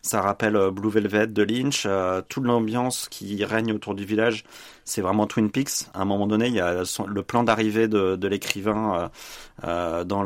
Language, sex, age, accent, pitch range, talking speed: French, male, 30-49, French, 95-115 Hz, 185 wpm